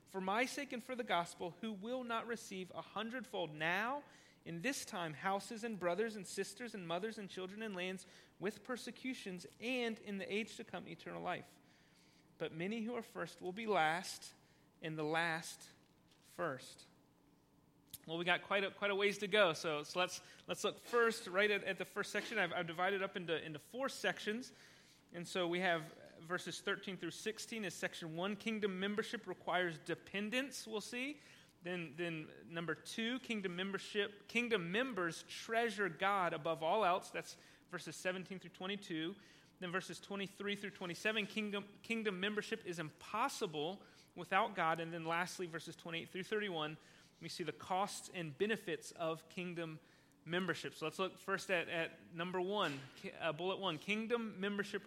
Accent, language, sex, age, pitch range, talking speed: American, English, male, 30-49, 170-210 Hz, 170 wpm